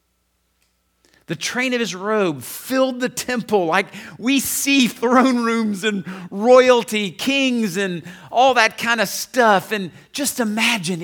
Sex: male